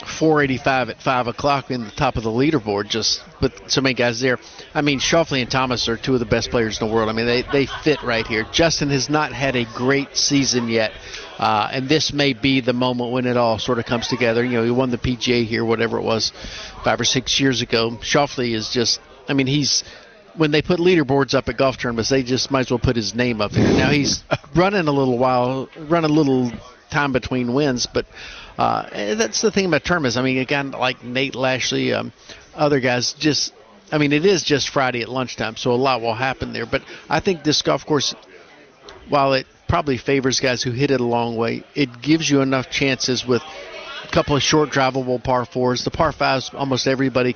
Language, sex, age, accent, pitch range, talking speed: English, male, 50-69, American, 120-140 Hz, 220 wpm